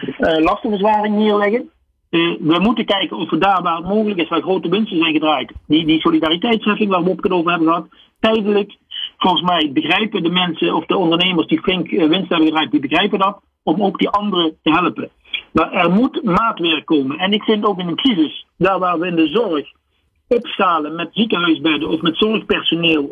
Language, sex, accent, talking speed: Dutch, male, Dutch, 200 wpm